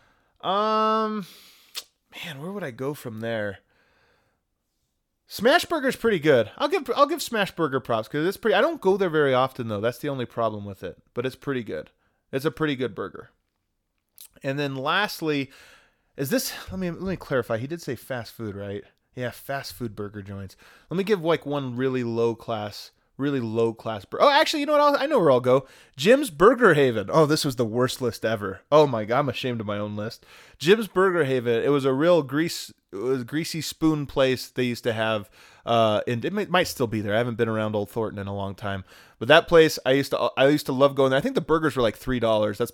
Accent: American